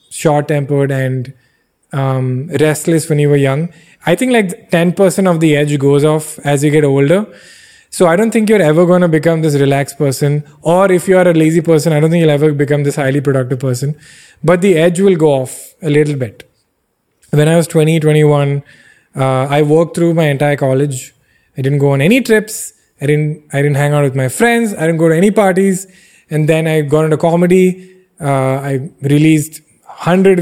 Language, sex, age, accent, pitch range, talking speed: English, male, 20-39, Indian, 140-175 Hz, 200 wpm